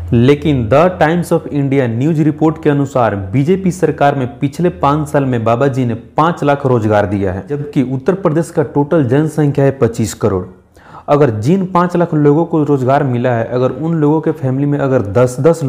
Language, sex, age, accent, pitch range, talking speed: Hindi, male, 30-49, native, 125-155 Hz, 190 wpm